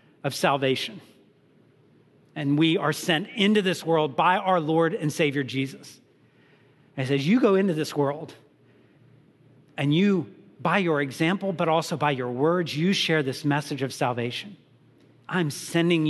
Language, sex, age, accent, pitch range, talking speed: English, male, 50-69, American, 130-155 Hz, 145 wpm